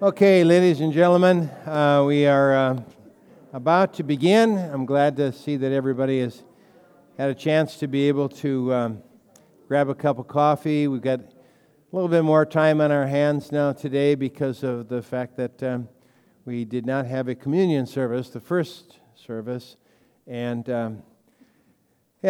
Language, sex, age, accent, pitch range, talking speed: English, male, 60-79, American, 120-145 Hz, 165 wpm